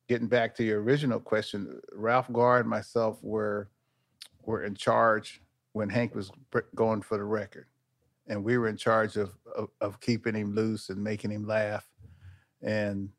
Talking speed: 170 wpm